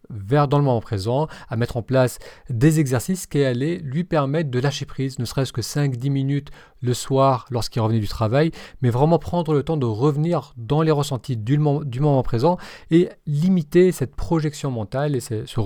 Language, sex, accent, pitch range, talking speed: French, male, French, 120-155 Hz, 195 wpm